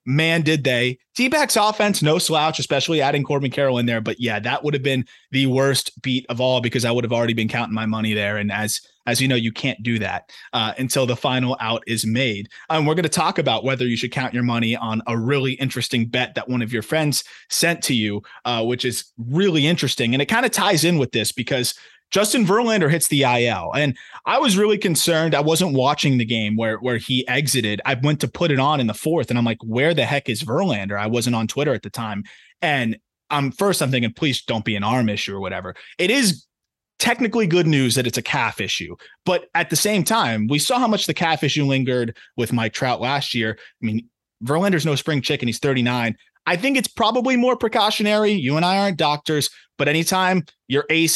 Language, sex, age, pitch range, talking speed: English, male, 30-49, 120-160 Hz, 230 wpm